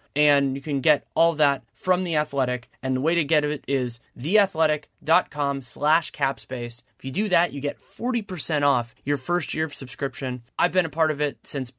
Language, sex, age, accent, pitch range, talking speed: English, male, 30-49, American, 135-160 Hz, 200 wpm